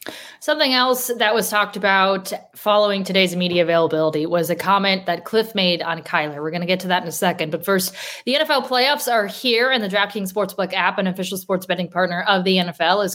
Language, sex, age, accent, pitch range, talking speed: English, female, 20-39, American, 180-215 Hz, 220 wpm